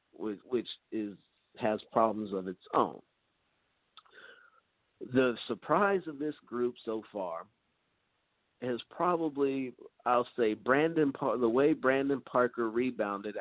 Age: 50-69